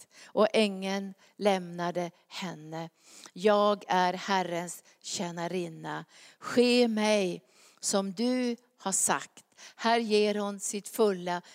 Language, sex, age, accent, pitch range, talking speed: Swedish, female, 50-69, native, 195-240 Hz, 100 wpm